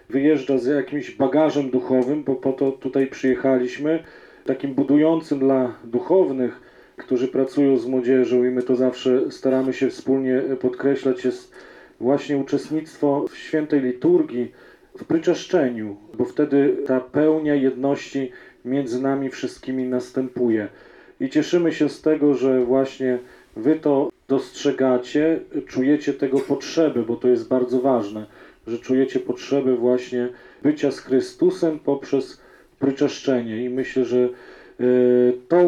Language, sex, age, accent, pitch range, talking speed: Polish, male, 40-59, native, 130-150 Hz, 125 wpm